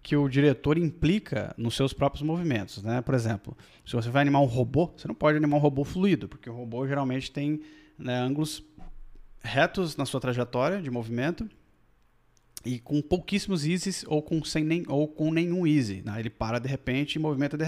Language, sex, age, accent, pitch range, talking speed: Portuguese, male, 20-39, Brazilian, 120-160 Hz, 185 wpm